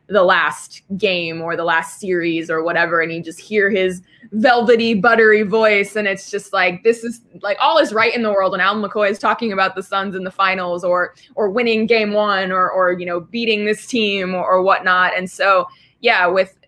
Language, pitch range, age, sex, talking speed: English, 170-205 Hz, 20-39, female, 215 wpm